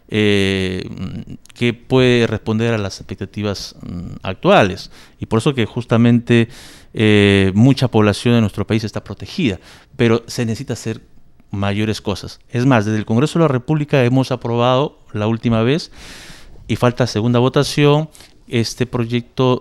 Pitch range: 105-130 Hz